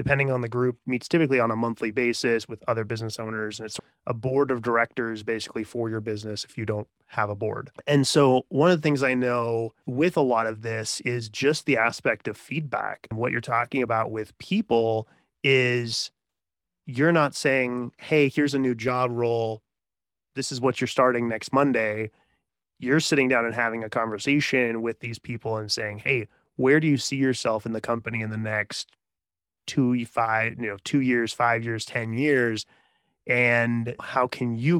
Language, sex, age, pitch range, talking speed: English, male, 30-49, 110-130 Hz, 190 wpm